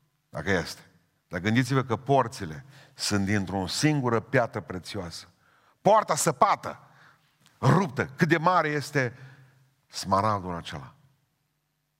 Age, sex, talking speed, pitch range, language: 50-69, male, 100 wpm, 115-165 Hz, Romanian